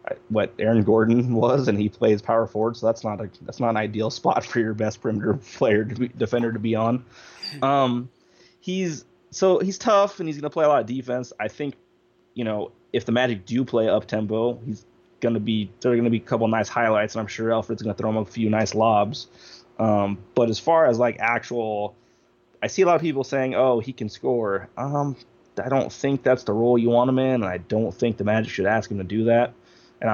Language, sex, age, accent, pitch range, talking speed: English, male, 20-39, American, 105-125 Hz, 245 wpm